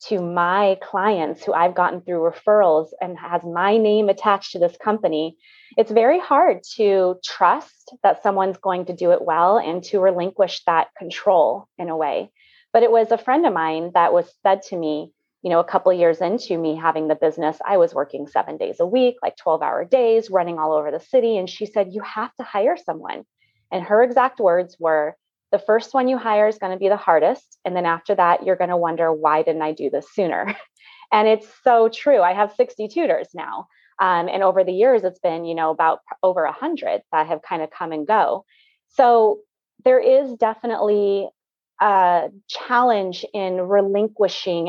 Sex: female